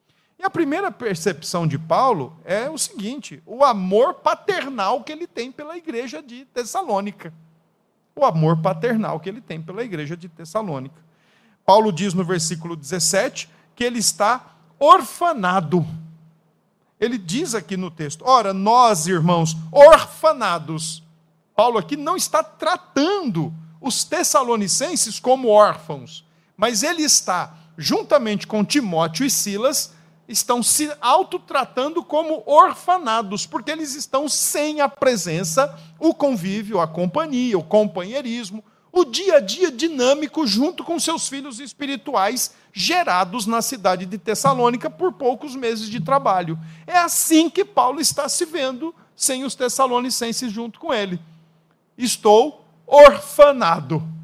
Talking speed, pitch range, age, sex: 130 wpm, 180-290 Hz, 50-69, male